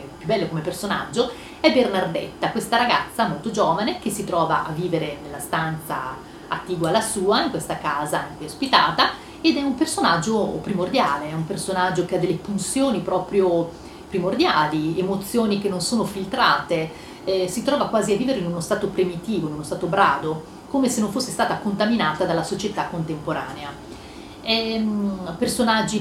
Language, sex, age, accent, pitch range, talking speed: Italian, female, 30-49, native, 170-220 Hz, 160 wpm